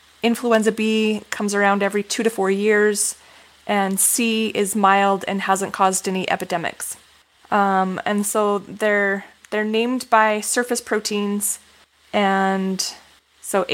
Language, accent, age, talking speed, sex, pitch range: English, American, 20-39, 125 wpm, female, 195-220 Hz